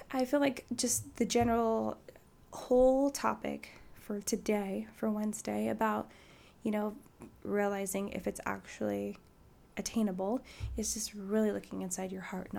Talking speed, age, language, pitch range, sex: 135 wpm, 10-29, English, 200-255 Hz, female